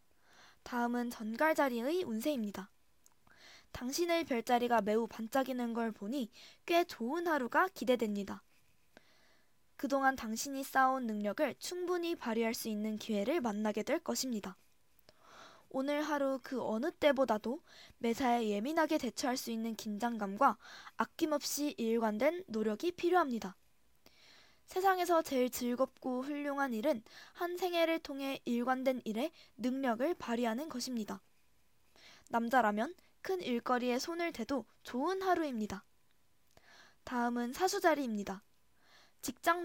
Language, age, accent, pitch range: Korean, 20-39, native, 230-310 Hz